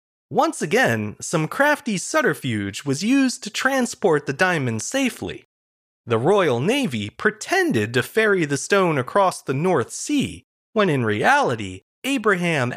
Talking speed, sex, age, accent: 130 wpm, male, 30-49, American